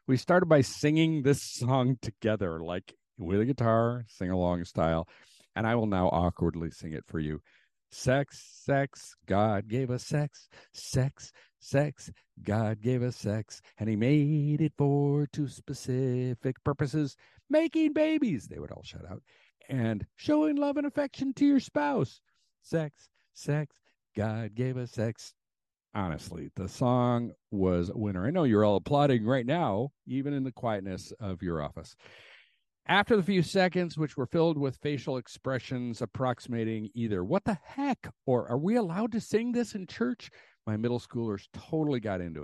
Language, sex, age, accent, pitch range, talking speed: English, male, 50-69, American, 100-145 Hz, 160 wpm